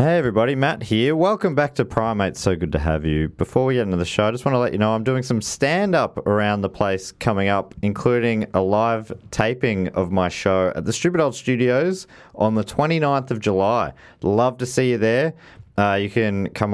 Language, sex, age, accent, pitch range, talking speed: English, male, 30-49, Australian, 95-130 Hz, 220 wpm